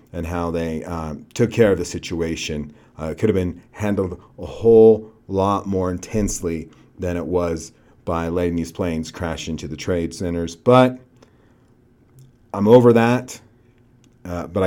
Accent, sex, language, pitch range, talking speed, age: American, male, English, 90-115 Hz, 155 wpm, 40-59